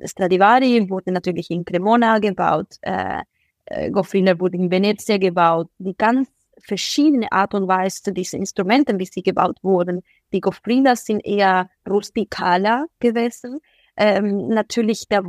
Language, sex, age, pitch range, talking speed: German, female, 20-39, 195-245 Hz, 130 wpm